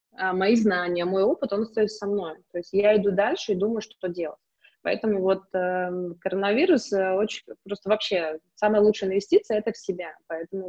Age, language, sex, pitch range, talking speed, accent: 20-39, Russian, female, 180-205 Hz, 175 wpm, native